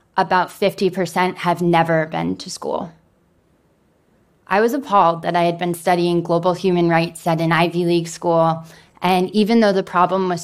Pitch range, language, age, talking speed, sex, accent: 165-180 Hz, Spanish, 20-39, 165 wpm, female, American